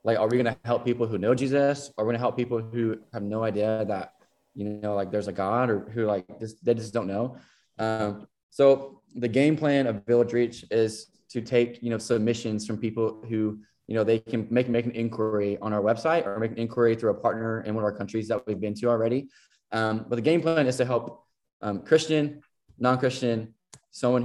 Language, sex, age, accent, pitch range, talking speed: English, male, 20-39, American, 110-130 Hz, 220 wpm